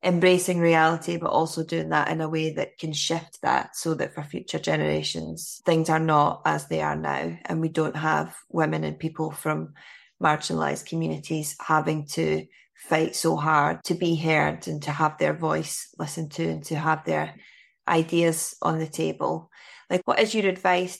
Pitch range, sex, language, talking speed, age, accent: 150-170 Hz, female, English, 180 wpm, 20-39, British